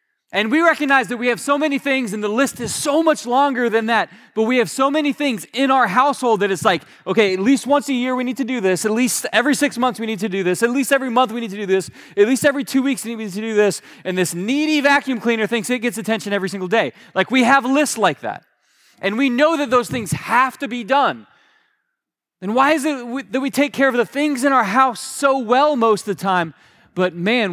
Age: 20-39